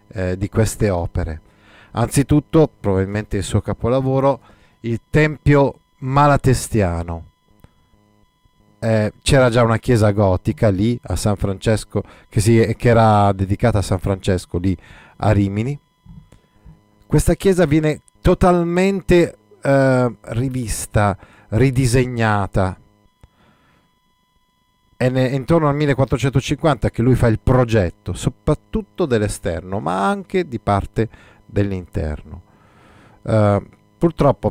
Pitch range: 100-125 Hz